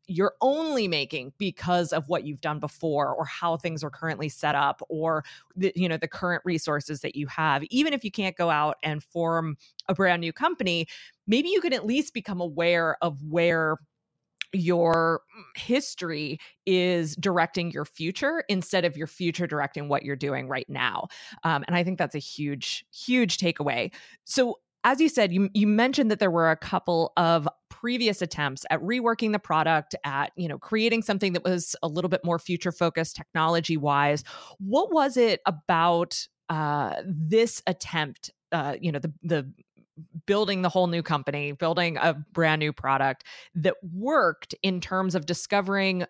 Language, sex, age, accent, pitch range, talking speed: English, female, 20-39, American, 155-190 Hz, 170 wpm